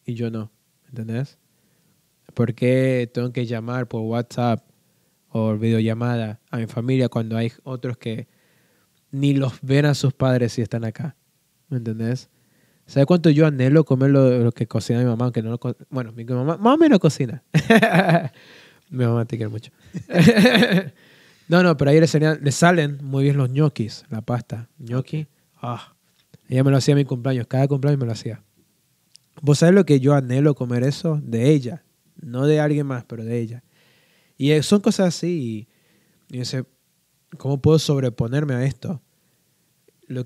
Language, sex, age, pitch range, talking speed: Spanish, male, 20-39, 120-155 Hz, 175 wpm